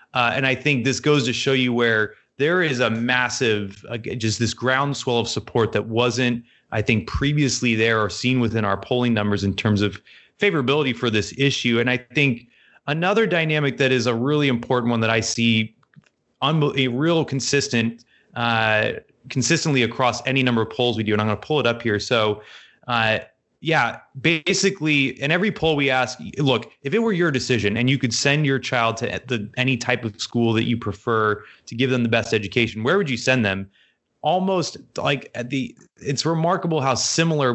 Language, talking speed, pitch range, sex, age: English, 200 wpm, 115-145 Hz, male, 30-49